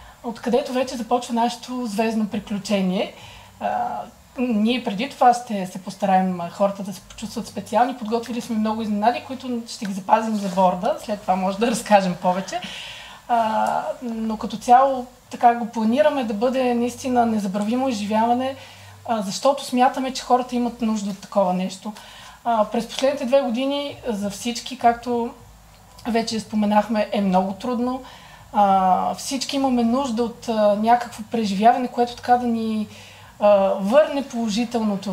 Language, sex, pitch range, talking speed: Bulgarian, female, 200-245 Hz, 130 wpm